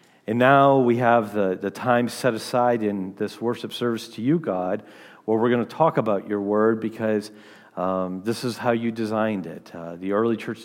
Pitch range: 100-120 Hz